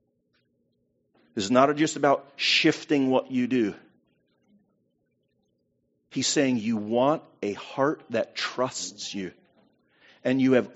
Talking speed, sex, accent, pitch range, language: 110 wpm, male, American, 100-145 Hz, English